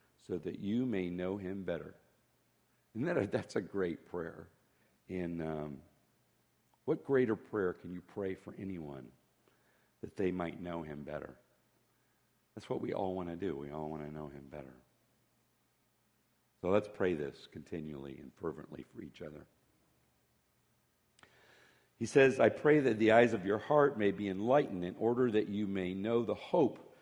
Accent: American